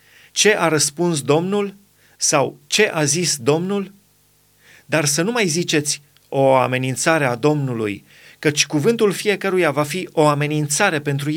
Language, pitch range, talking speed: Romanian, 140-175 Hz, 135 wpm